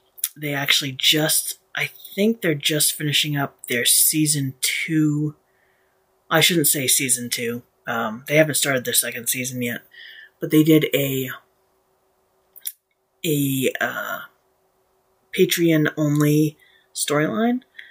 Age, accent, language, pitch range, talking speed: 30-49, American, English, 135-160 Hz, 115 wpm